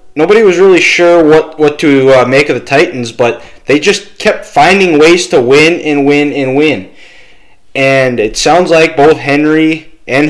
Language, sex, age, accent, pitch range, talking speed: English, male, 20-39, American, 120-150 Hz, 180 wpm